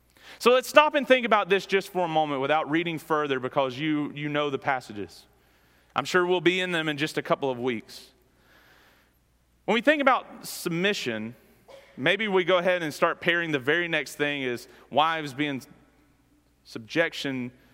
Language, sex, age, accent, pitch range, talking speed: English, male, 30-49, American, 130-190 Hz, 175 wpm